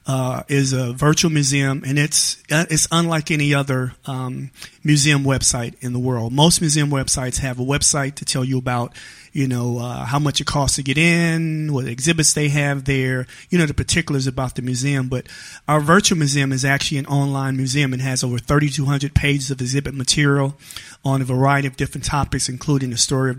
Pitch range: 130-145 Hz